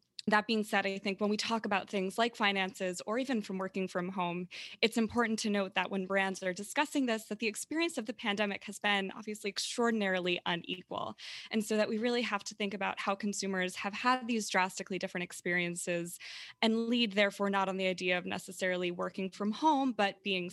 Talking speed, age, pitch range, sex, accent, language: 205 wpm, 20-39, 190-220 Hz, female, American, English